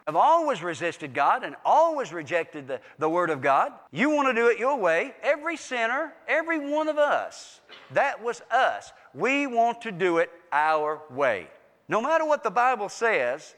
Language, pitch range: English, 170-265 Hz